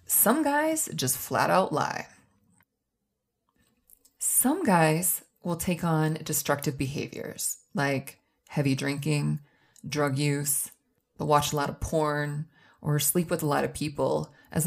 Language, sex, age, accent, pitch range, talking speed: English, female, 30-49, American, 150-220 Hz, 130 wpm